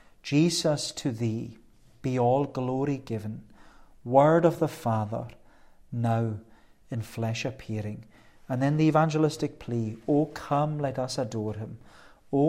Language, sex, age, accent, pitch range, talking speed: English, male, 40-59, British, 120-155 Hz, 130 wpm